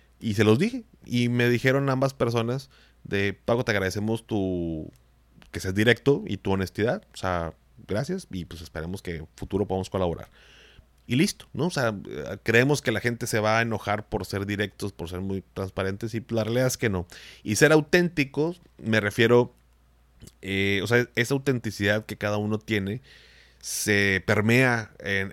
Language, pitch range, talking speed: Spanish, 95-120 Hz, 175 wpm